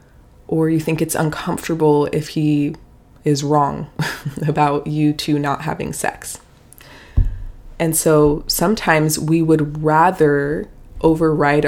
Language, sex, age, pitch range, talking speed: English, female, 20-39, 145-160 Hz, 115 wpm